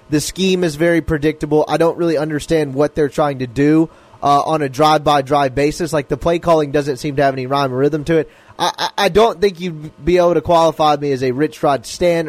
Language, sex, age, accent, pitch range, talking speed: English, male, 20-39, American, 150-190 Hz, 240 wpm